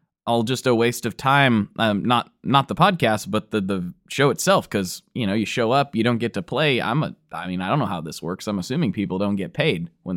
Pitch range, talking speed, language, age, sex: 110-155 Hz, 260 wpm, English, 20-39, male